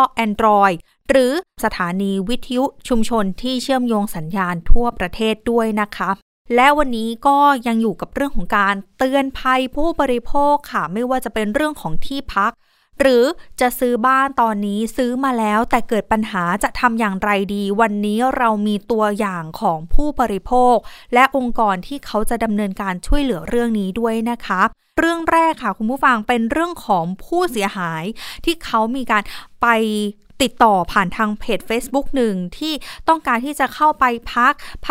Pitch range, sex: 210-265 Hz, female